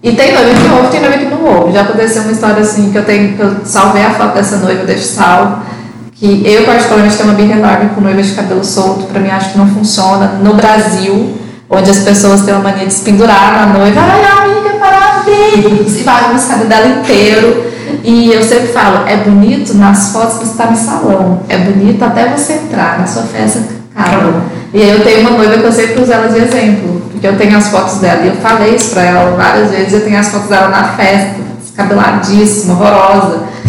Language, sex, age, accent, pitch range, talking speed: Portuguese, female, 20-39, Brazilian, 195-235 Hz, 225 wpm